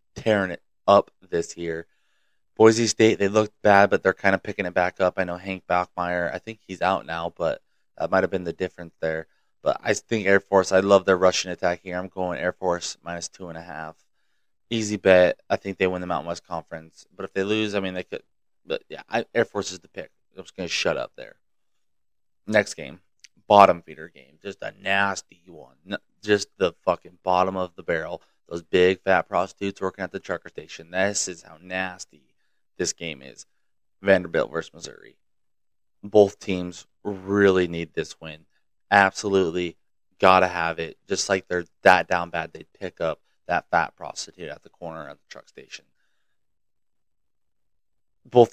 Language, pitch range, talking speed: English, 90-100 Hz, 190 wpm